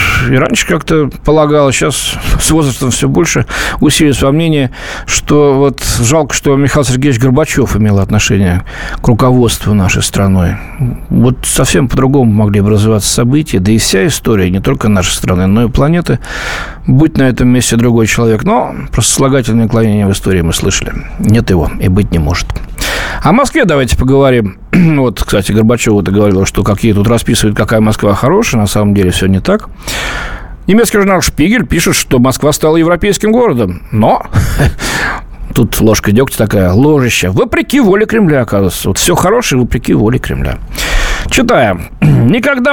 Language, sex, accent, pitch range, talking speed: Russian, male, native, 105-160 Hz, 155 wpm